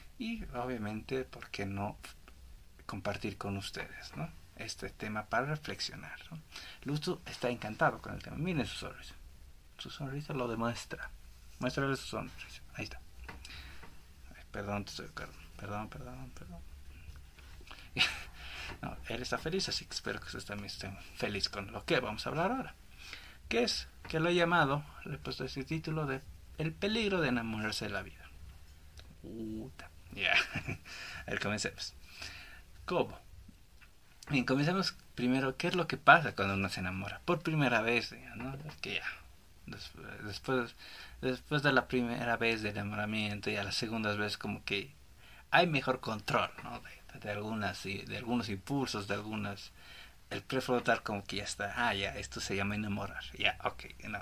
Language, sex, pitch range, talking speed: Spanish, male, 90-130 Hz, 165 wpm